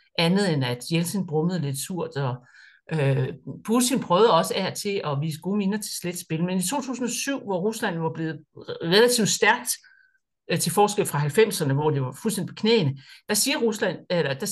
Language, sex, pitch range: Danish, male, 155-210 Hz